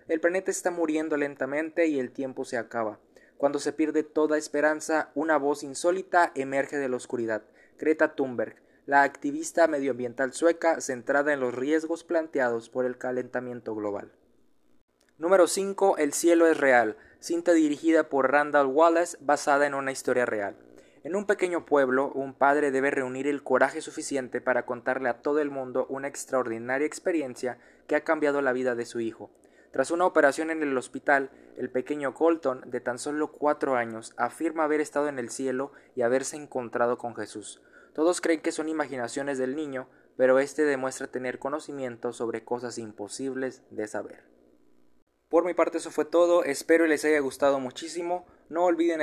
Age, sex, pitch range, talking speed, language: 20-39, male, 125-155 Hz, 170 wpm, Spanish